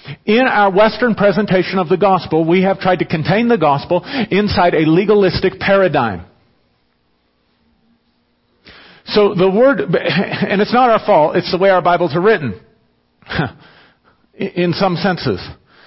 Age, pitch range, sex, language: 50-69, 165-205 Hz, male, English